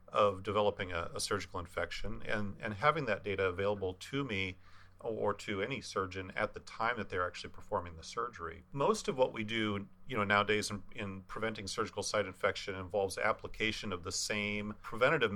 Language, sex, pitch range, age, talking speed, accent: English, male, 95-110 Hz, 40-59, 185 wpm, American